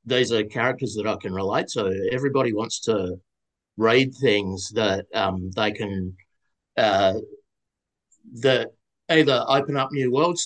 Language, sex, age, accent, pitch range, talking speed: English, male, 50-69, Australian, 105-140 Hz, 140 wpm